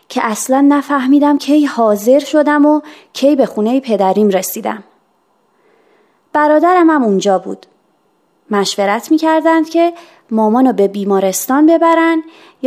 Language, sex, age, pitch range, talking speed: Persian, female, 30-49, 210-315 Hz, 120 wpm